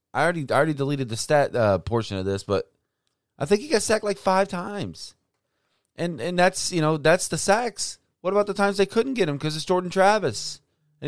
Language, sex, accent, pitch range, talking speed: English, male, American, 130-185 Hz, 220 wpm